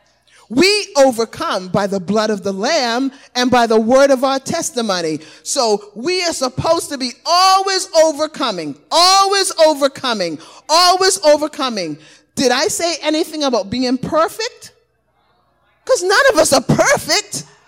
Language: English